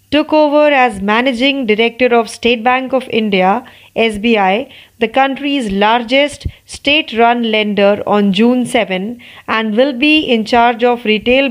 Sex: female